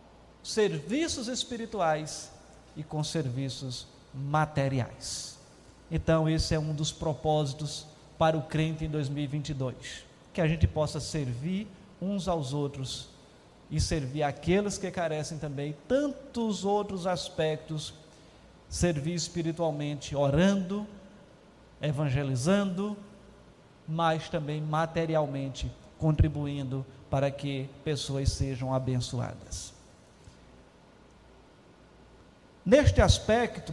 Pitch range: 150-190 Hz